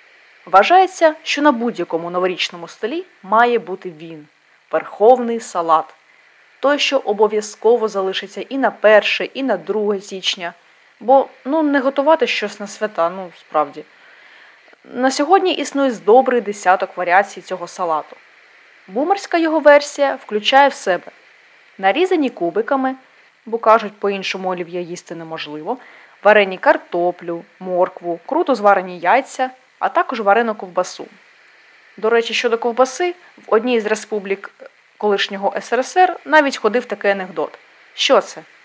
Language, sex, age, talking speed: Ukrainian, female, 20-39, 125 wpm